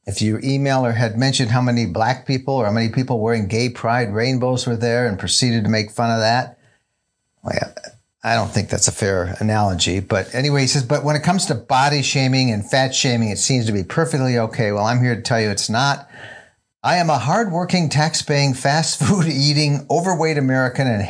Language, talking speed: English, 215 wpm